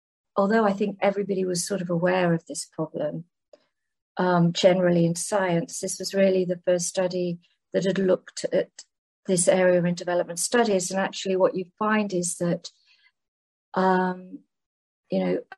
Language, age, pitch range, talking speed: English, 50-69, 180-200 Hz, 155 wpm